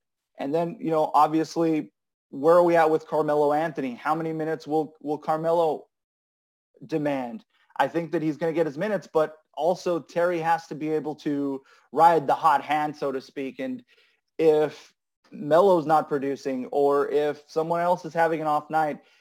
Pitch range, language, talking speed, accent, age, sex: 150-175 Hz, English, 180 wpm, American, 30-49, male